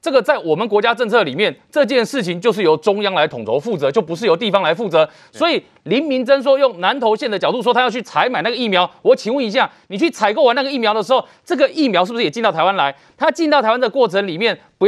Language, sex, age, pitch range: Chinese, male, 30-49, 195-270 Hz